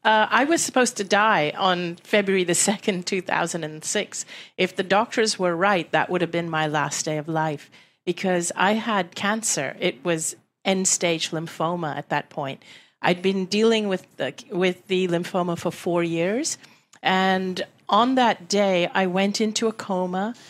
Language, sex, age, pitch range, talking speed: English, female, 40-59, 170-200 Hz, 175 wpm